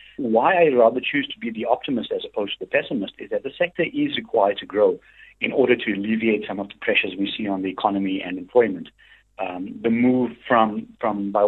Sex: male